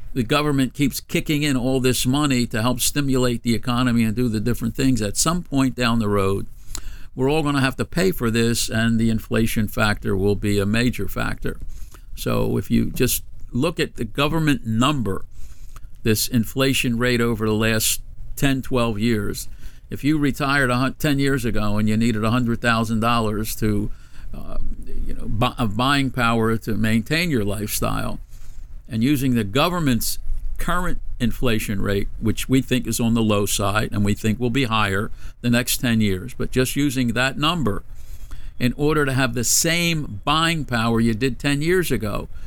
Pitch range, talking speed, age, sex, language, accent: 110-135 Hz, 175 wpm, 50-69, male, English, American